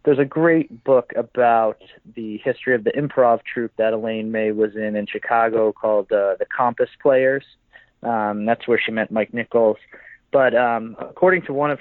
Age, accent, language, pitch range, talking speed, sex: 30-49, American, English, 115-145 Hz, 185 wpm, male